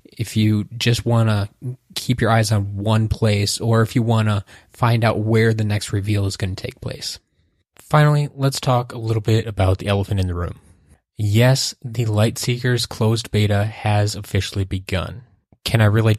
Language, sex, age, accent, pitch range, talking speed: English, male, 20-39, American, 105-120 Hz, 185 wpm